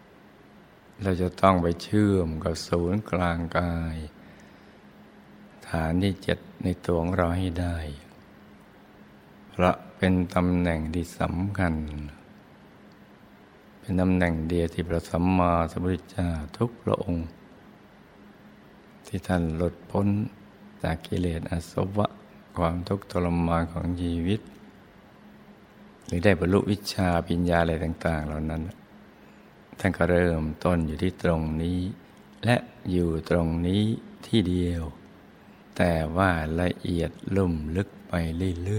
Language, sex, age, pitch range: Thai, male, 60-79, 85-90 Hz